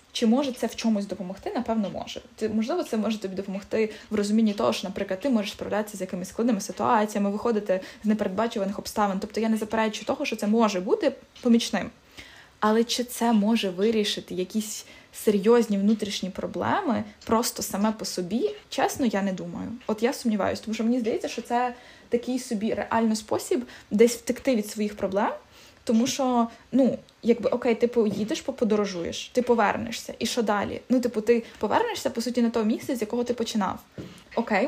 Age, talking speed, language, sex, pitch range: 20-39, 175 wpm, Ukrainian, female, 210-240 Hz